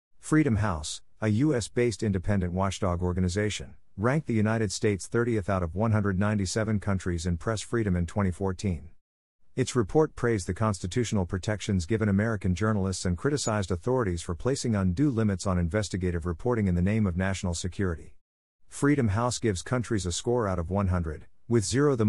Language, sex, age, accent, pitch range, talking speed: English, male, 50-69, American, 90-115 Hz, 160 wpm